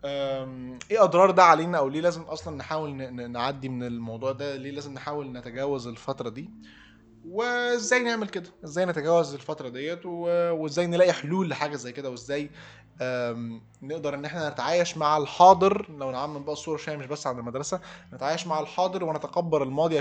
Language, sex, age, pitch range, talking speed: Arabic, male, 20-39, 130-165 Hz, 155 wpm